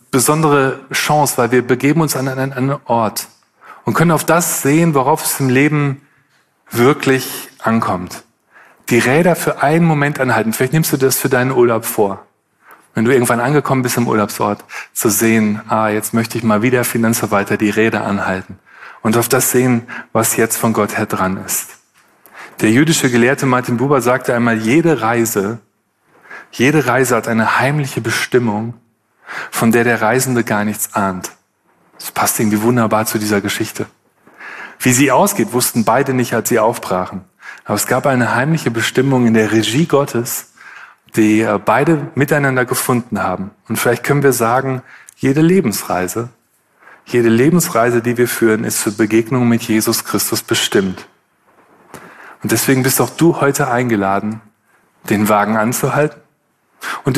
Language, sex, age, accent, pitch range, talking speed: German, male, 30-49, German, 110-135 Hz, 155 wpm